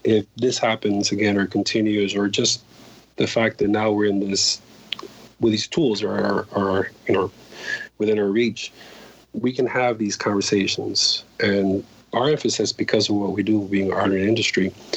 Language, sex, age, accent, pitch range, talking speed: English, male, 40-59, American, 100-120 Hz, 170 wpm